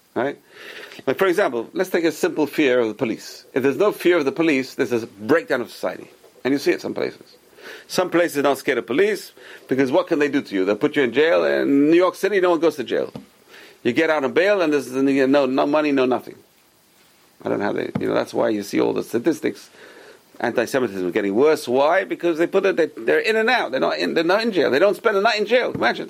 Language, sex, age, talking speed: English, male, 40-59, 260 wpm